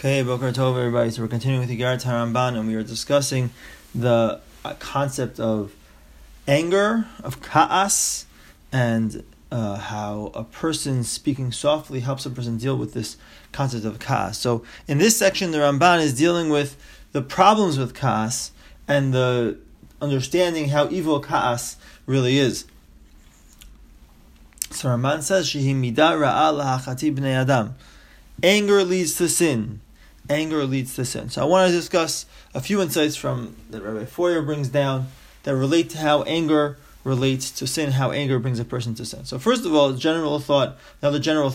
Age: 30-49